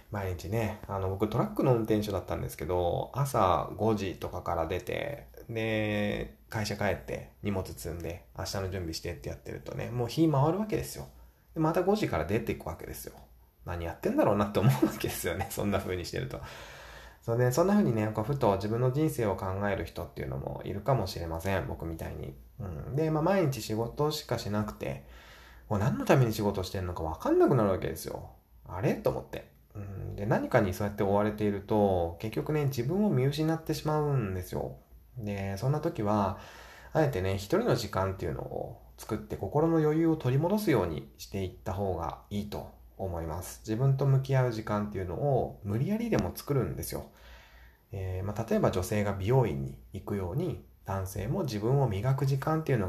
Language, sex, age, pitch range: Japanese, male, 20-39, 90-125 Hz